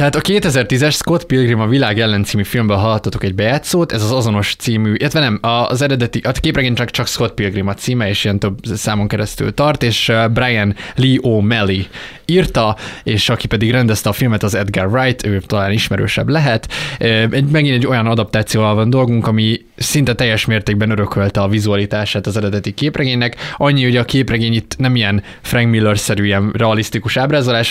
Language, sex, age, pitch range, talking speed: Hungarian, male, 20-39, 105-125 Hz, 180 wpm